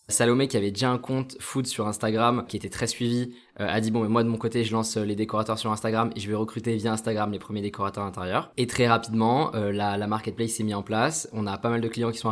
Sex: male